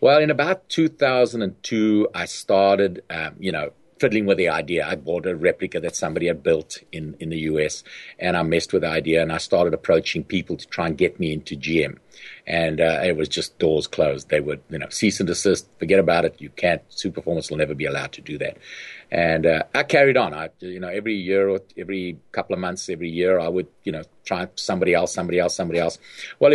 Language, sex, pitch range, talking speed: English, male, 80-100 Hz, 220 wpm